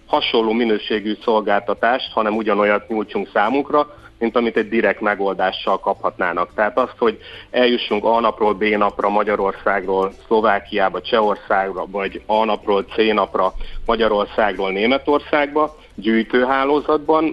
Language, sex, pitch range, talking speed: Hungarian, male, 105-120 Hz, 110 wpm